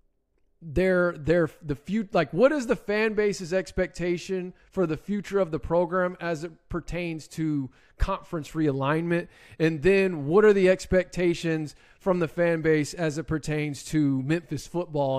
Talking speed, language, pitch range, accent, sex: 155 wpm, English, 155-195 Hz, American, male